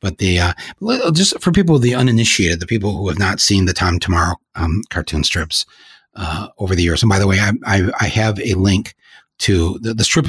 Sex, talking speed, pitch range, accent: male, 220 wpm, 90-110 Hz, American